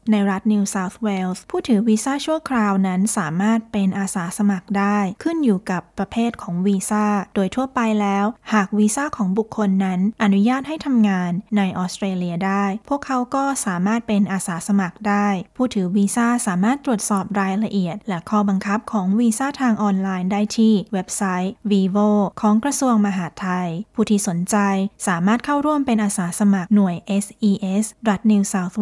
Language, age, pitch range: Thai, 20-39, 195-220 Hz